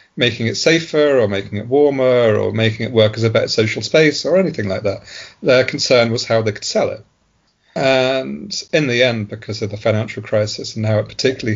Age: 40-59